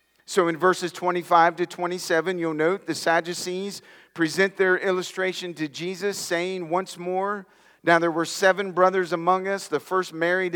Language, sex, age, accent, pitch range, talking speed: English, male, 40-59, American, 150-195 Hz, 160 wpm